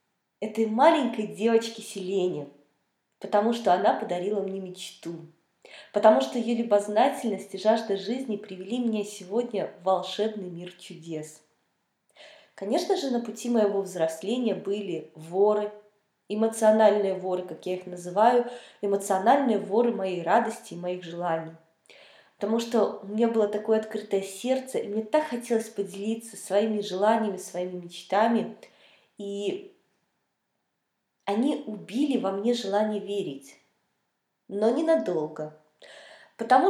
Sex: female